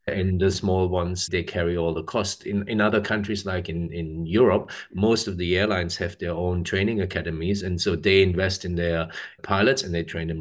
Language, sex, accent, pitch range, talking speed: English, male, German, 90-105 Hz, 215 wpm